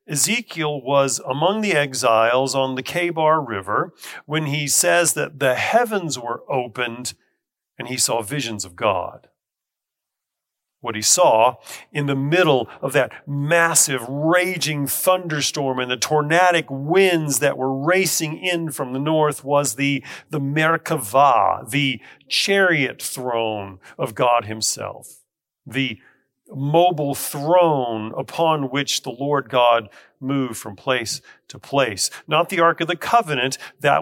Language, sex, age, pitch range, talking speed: English, male, 40-59, 130-160 Hz, 130 wpm